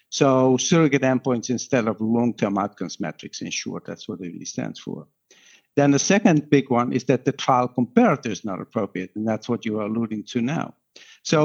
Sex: male